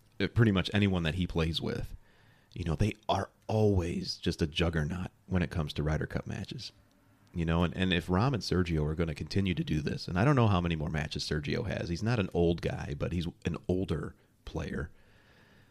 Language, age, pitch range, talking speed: English, 30-49, 80-100 Hz, 220 wpm